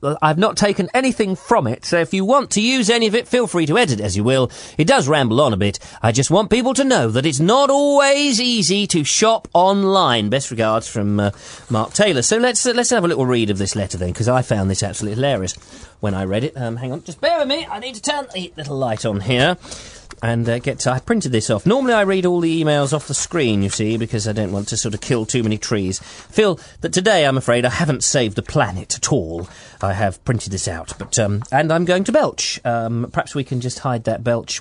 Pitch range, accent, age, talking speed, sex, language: 110-185 Hz, British, 40-59, 260 wpm, male, English